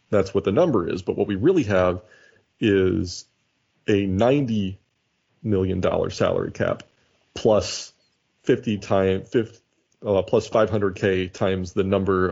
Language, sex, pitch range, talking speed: English, male, 95-115 Hz, 130 wpm